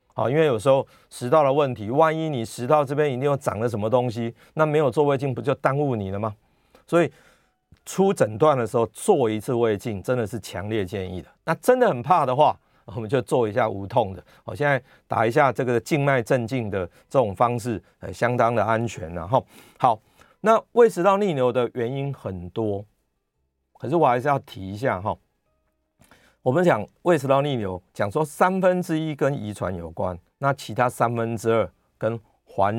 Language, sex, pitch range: Chinese, male, 105-150 Hz